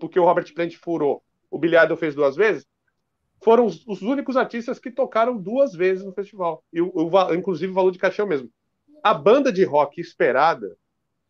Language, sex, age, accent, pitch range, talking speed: Portuguese, male, 40-59, Brazilian, 180-235 Hz, 190 wpm